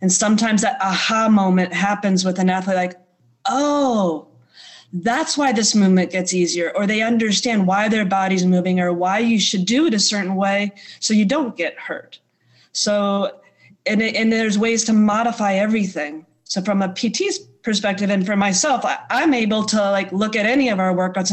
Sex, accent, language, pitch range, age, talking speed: female, American, English, 185-215 Hz, 30-49, 180 wpm